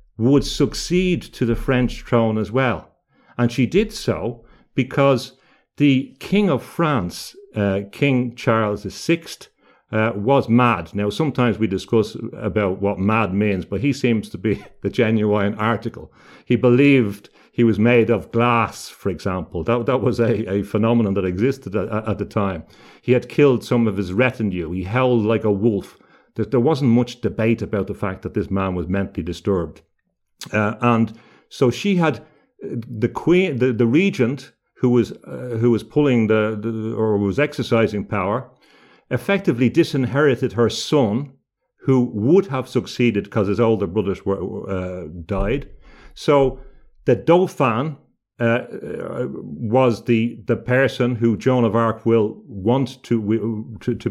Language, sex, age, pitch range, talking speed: English, male, 50-69, 105-130 Hz, 155 wpm